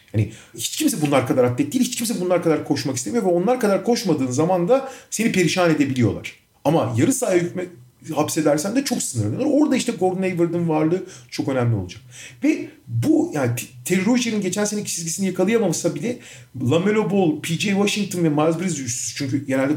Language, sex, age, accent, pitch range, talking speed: Turkish, male, 40-59, native, 135-185 Hz, 170 wpm